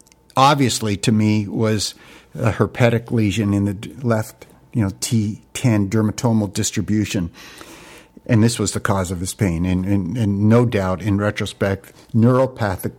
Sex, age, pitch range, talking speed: male, 60-79, 100-120 Hz, 145 wpm